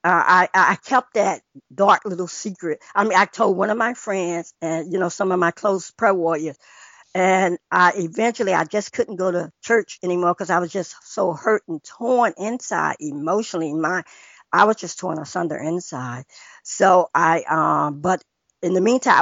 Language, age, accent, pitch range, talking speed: English, 60-79, American, 170-205 Hz, 180 wpm